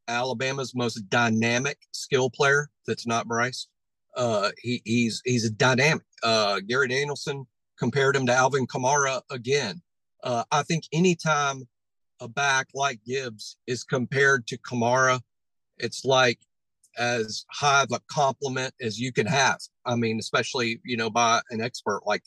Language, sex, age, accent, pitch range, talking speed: English, male, 40-59, American, 125-180 Hz, 145 wpm